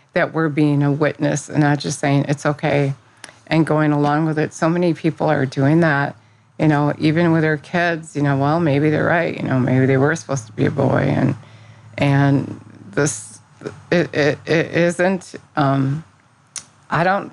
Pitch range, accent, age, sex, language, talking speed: 135-160 Hz, American, 50-69, female, English, 185 wpm